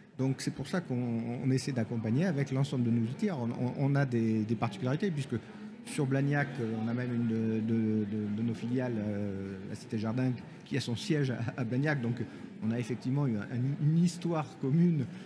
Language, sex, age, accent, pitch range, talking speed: French, male, 50-69, French, 115-150 Hz, 195 wpm